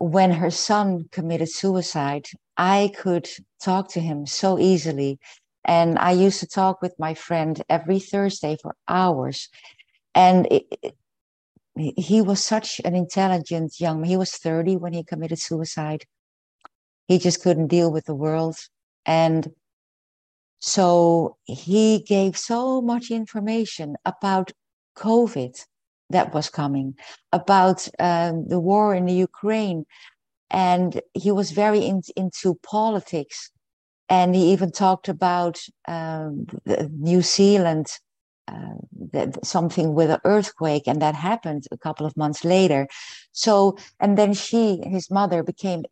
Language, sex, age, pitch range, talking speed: English, female, 50-69, 160-195 Hz, 130 wpm